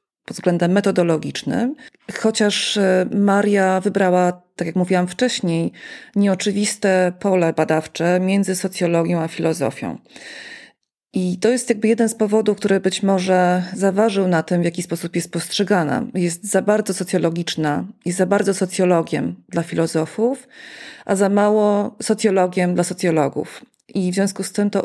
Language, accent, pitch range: Polish, native, 175-210 Hz